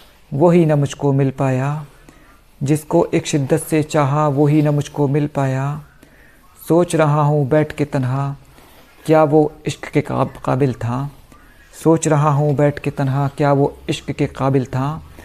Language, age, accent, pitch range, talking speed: Hindi, 50-69, native, 135-150 Hz, 155 wpm